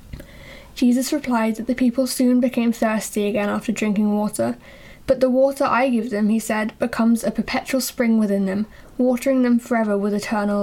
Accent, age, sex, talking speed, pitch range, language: British, 10-29, female, 175 wpm, 215-255 Hz, English